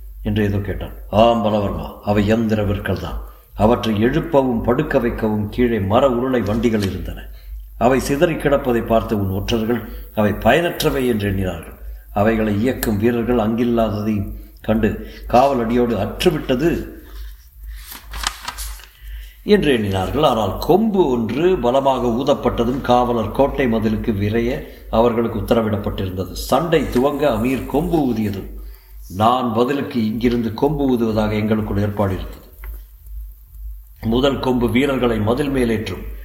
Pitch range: 100-130 Hz